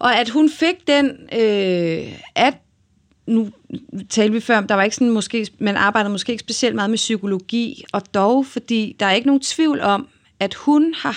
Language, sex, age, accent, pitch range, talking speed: Danish, female, 30-49, native, 195-250 Hz, 195 wpm